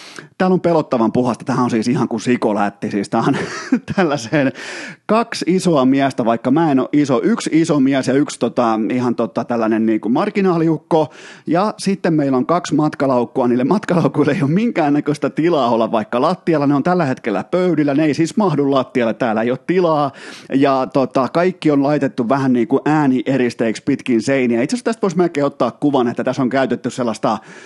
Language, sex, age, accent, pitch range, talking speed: Finnish, male, 30-49, native, 115-150 Hz, 180 wpm